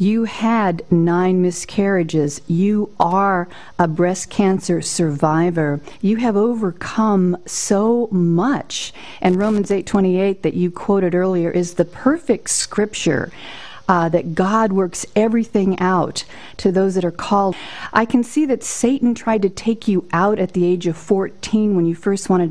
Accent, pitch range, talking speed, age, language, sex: American, 175-205 Hz, 150 wpm, 50-69, English, female